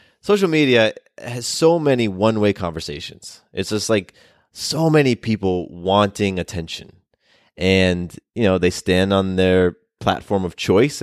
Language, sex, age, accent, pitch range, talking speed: English, male, 20-39, American, 90-120 Hz, 135 wpm